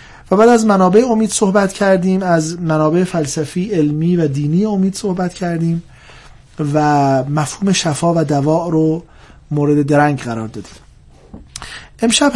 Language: Persian